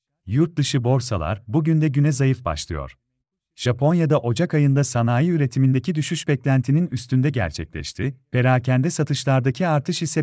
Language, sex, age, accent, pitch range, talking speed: Turkish, male, 40-59, native, 120-150 Hz, 115 wpm